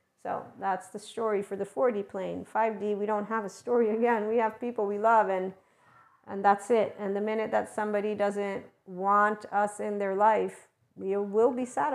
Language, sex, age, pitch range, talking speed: English, female, 40-59, 200-240 Hz, 195 wpm